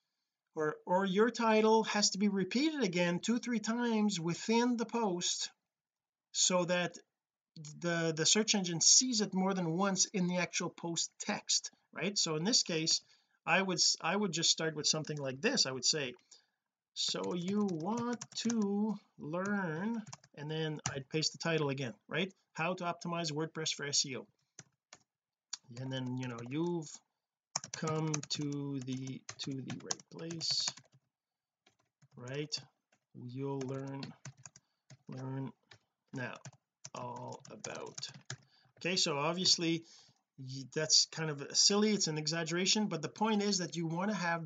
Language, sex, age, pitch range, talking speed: English, male, 40-59, 150-195 Hz, 145 wpm